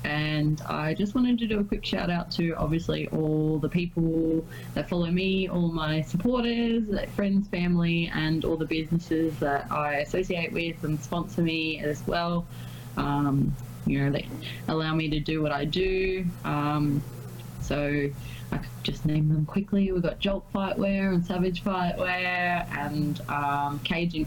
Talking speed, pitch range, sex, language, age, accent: 160 wpm, 145-180 Hz, female, English, 20-39, Australian